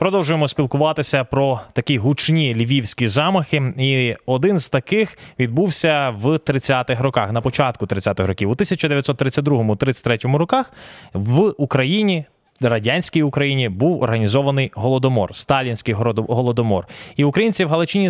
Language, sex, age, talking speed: Ukrainian, male, 20-39, 120 wpm